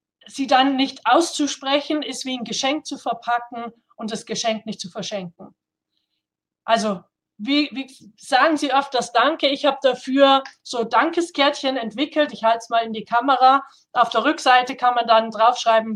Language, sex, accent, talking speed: German, female, German, 165 wpm